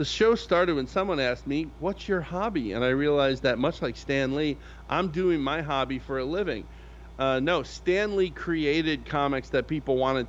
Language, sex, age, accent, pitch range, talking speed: English, male, 30-49, American, 110-155 Hz, 200 wpm